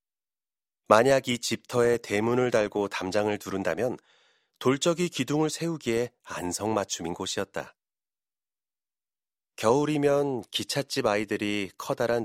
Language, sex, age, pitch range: Korean, male, 30-49, 100-130 Hz